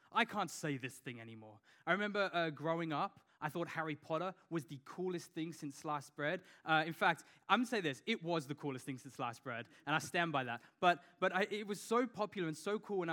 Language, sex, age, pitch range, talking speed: English, male, 20-39, 150-180 Hz, 245 wpm